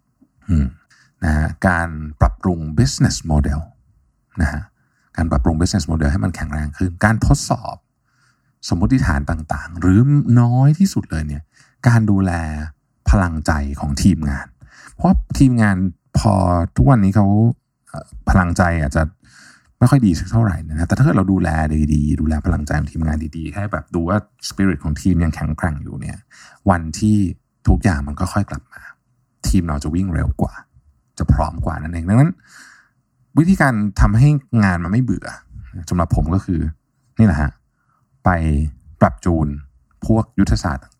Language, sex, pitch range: Thai, male, 80-110 Hz